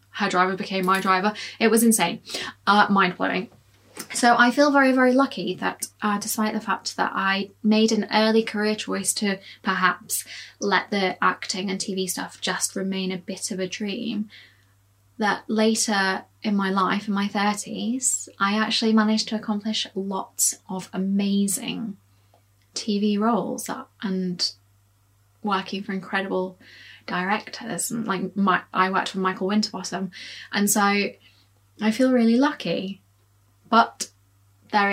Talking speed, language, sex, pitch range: 140 wpm, English, female, 180-220 Hz